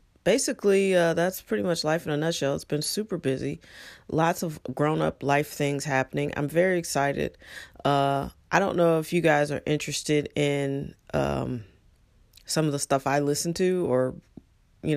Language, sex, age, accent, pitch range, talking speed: English, female, 30-49, American, 140-175 Hz, 170 wpm